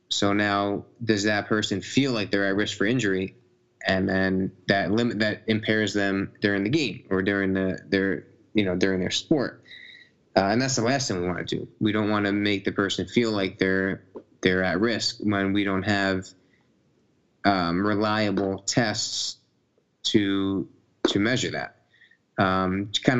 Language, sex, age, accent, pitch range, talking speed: English, male, 20-39, American, 95-110 Hz, 175 wpm